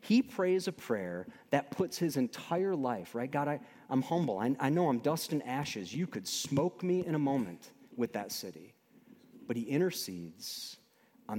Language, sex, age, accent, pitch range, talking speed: English, male, 30-49, American, 130-190 Hz, 180 wpm